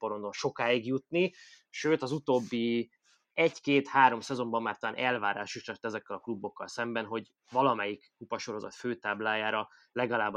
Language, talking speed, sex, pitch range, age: Hungarian, 120 wpm, male, 115-150 Hz, 20-39